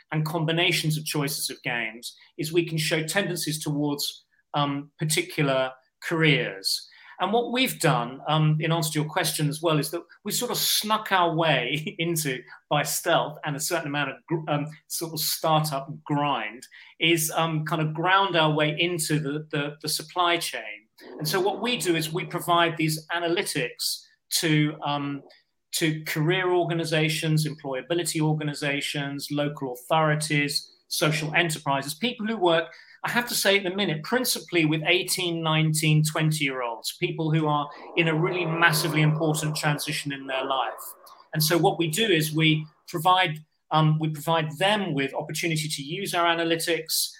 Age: 40-59